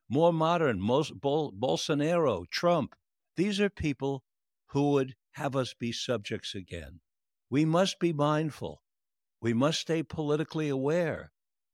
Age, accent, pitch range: 60-79, American, 100-140 Hz